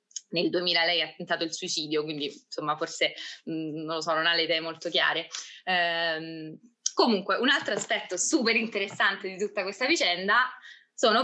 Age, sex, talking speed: 20-39, female, 170 wpm